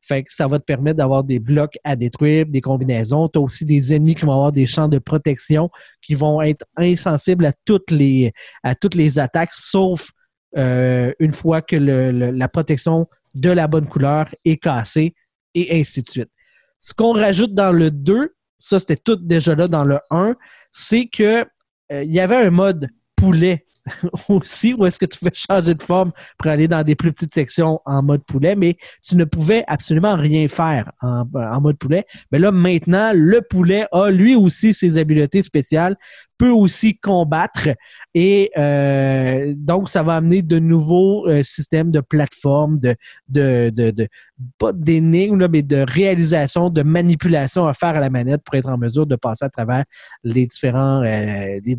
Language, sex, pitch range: French, male, 135-175 Hz